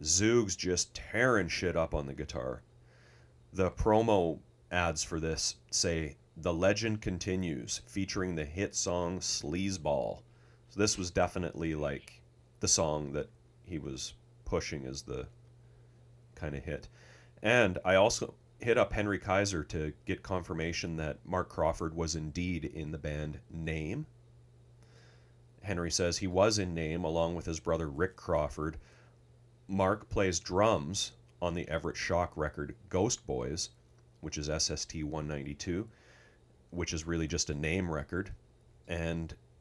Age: 30-49